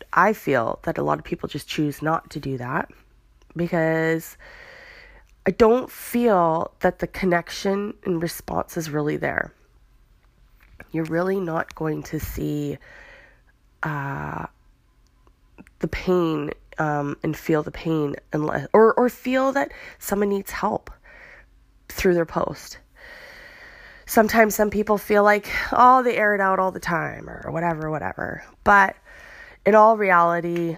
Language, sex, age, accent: English, female, 20-39, American